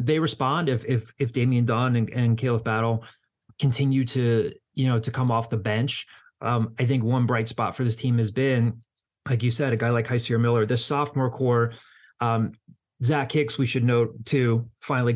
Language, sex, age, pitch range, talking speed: English, male, 30-49, 115-130 Hz, 200 wpm